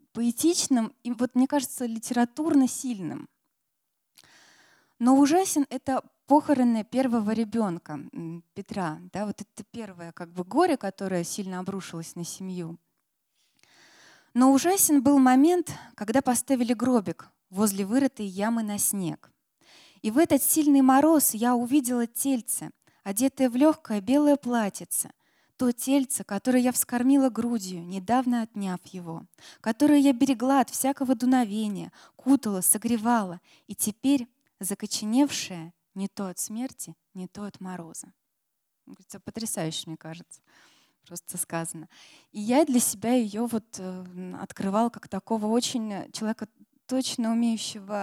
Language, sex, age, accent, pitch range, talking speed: Russian, female, 20-39, native, 195-260 Hz, 120 wpm